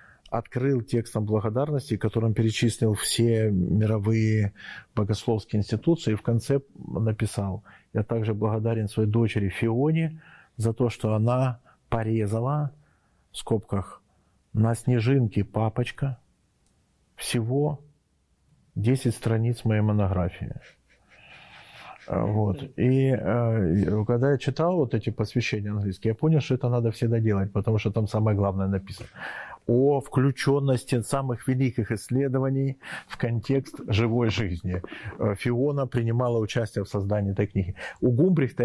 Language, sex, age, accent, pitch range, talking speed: Russian, male, 40-59, native, 110-130 Hz, 115 wpm